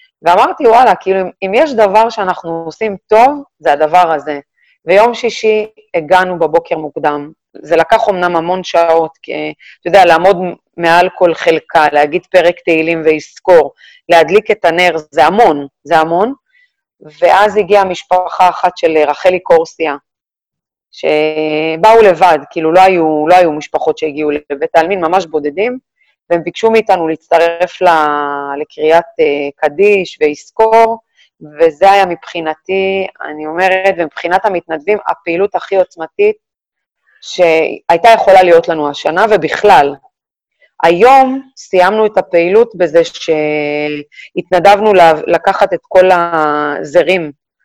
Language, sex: Hebrew, female